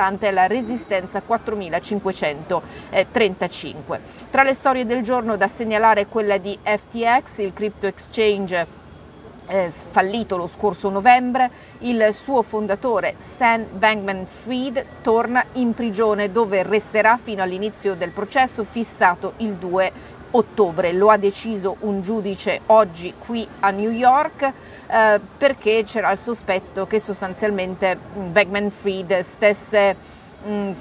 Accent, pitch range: native, 185-225 Hz